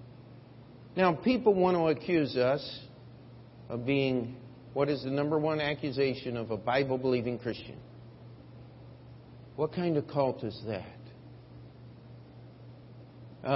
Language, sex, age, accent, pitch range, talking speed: English, male, 50-69, American, 115-150 Hz, 115 wpm